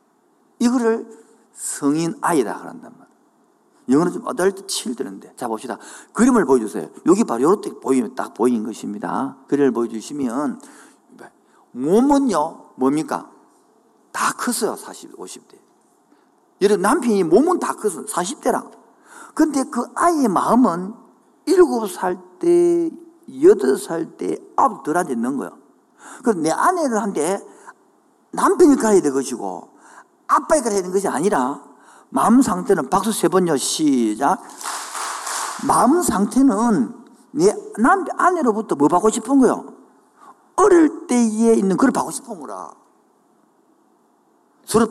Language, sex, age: Korean, male, 50-69